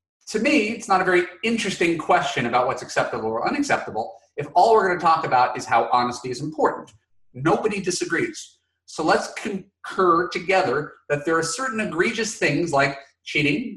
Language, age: English, 30-49